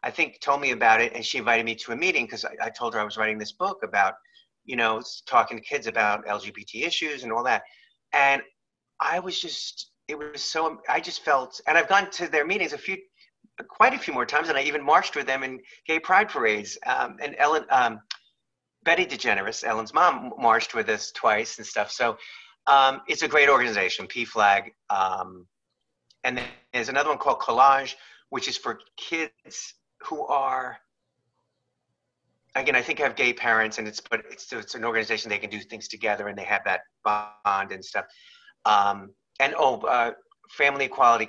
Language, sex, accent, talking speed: English, male, American, 195 wpm